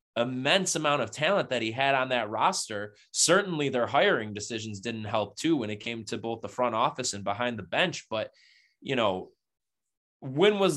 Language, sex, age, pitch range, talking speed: English, male, 20-39, 110-140 Hz, 190 wpm